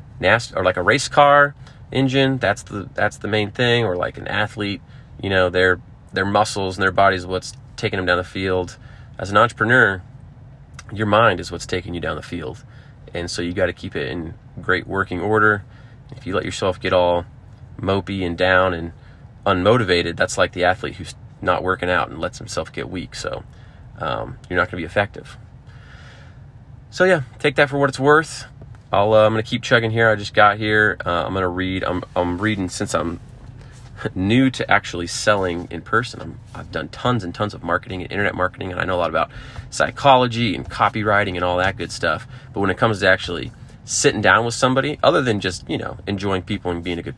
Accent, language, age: American, English, 30-49